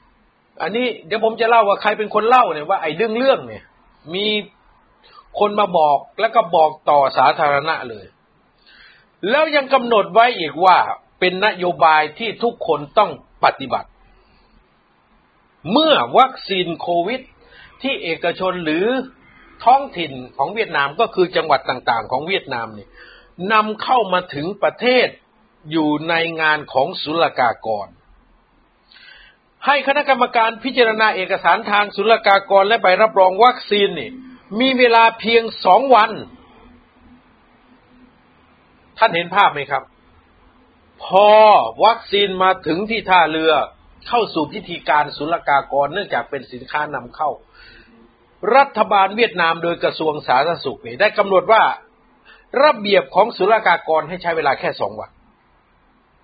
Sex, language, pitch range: male, Thai, 170-230 Hz